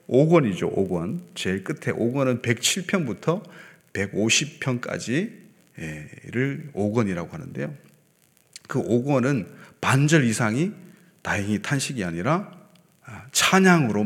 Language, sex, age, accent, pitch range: Korean, male, 40-59, native, 130-190 Hz